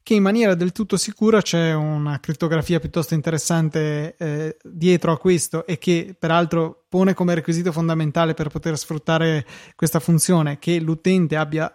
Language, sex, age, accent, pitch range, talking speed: Italian, male, 20-39, native, 155-175 Hz, 155 wpm